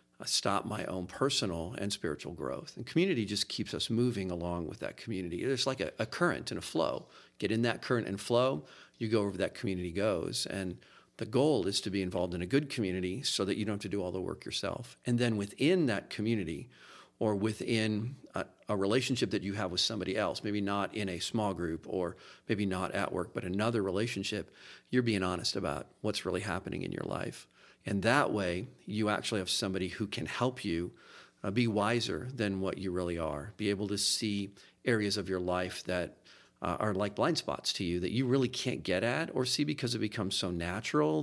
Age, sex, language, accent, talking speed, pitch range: 40-59, male, English, American, 215 wpm, 95-115 Hz